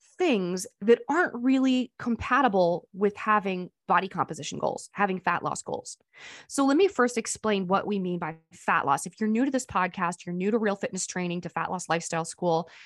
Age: 20-39